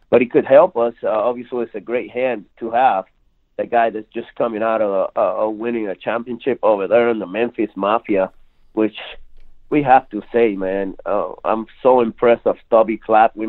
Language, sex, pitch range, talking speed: English, male, 105-120 Hz, 195 wpm